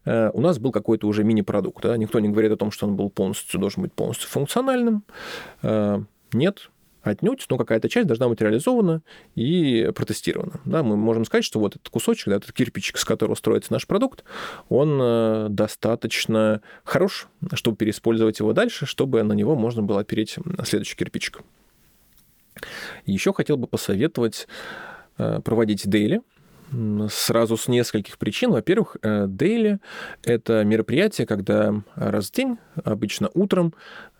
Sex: male